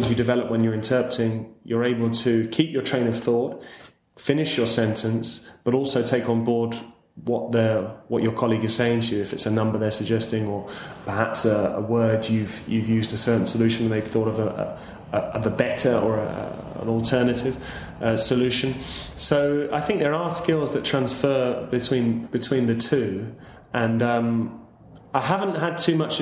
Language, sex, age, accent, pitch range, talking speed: English, male, 20-39, British, 115-130 Hz, 190 wpm